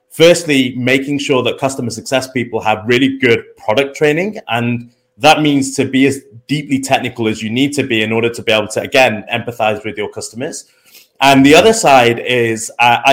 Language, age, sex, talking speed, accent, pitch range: English, 30-49, male, 190 wpm, British, 115-140 Hz